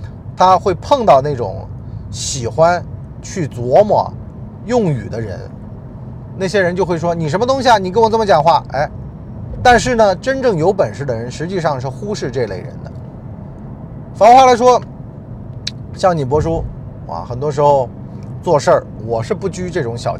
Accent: native